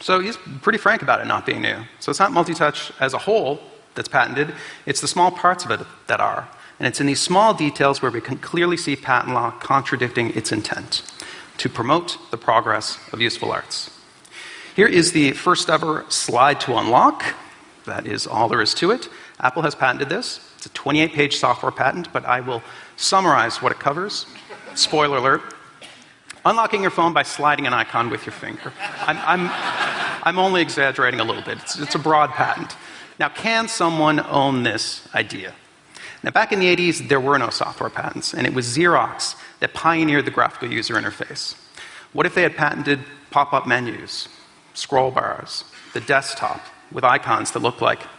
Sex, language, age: male, English, 40-59